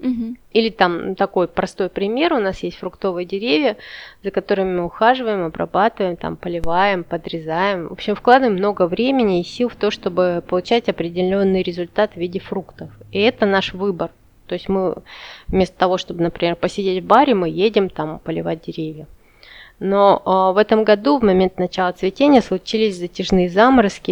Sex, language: female, Russian